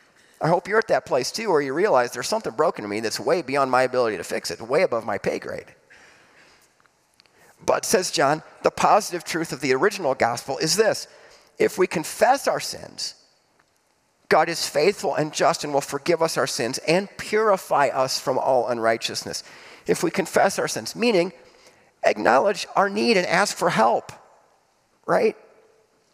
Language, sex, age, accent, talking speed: English, male, 40-59, American, 175 wpm